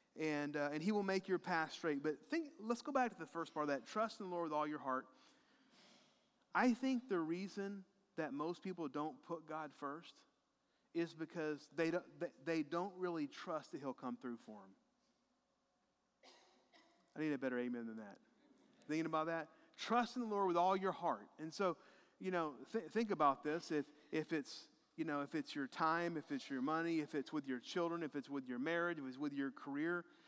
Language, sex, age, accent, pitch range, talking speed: English, male, 30-49, American, 155-200 Hz, 210 wpm